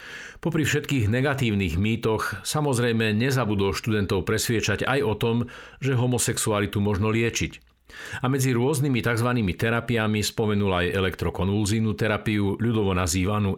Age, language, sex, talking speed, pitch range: 50-69, Slovak, male, 115 wpm, 100-125 Hz